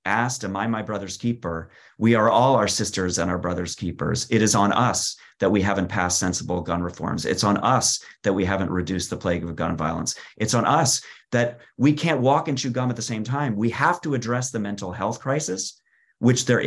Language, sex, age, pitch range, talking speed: English, male, 30-49, 100-125 Hz, 225 wpm